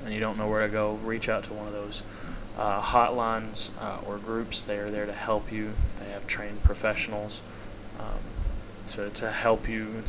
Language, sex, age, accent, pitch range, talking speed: English, male, 20-39, American, 105-115 Hz, 200 wpm